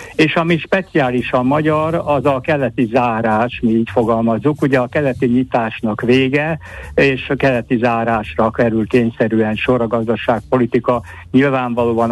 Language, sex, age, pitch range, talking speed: Hungarian, male, 60-79, 115-130 Hz, 135 wpm